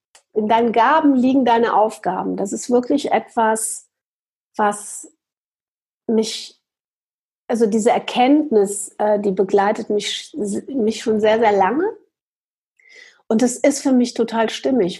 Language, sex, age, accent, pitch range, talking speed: German, female, 40-59, German, 205-260 Hz, 120 wpm